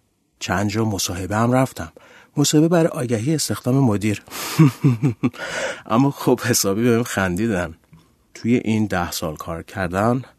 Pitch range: 95-125 Hz